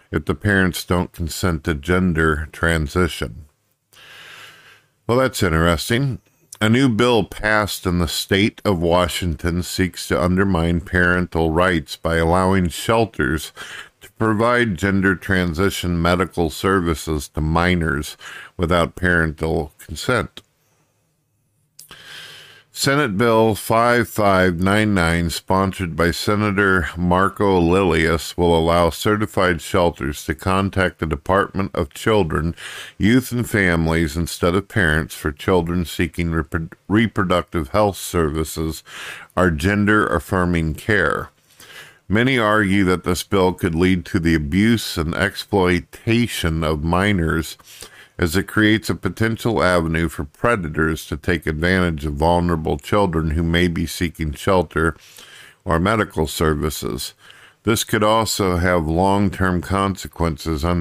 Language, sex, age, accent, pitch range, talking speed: English, male, 50-69, American, 80-100 Hz, 115 wpm